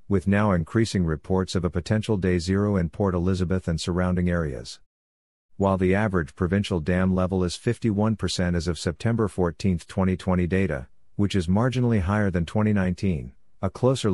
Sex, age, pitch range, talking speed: male, 50-69, 85-105 Hz, 155 wpm